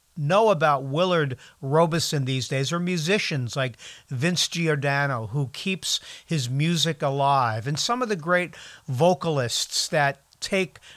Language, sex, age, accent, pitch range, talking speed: English, male, 50-69, American, 135-175 Hz, 130 wpm